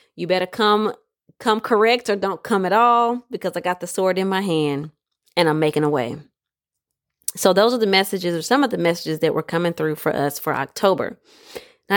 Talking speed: 210 wpm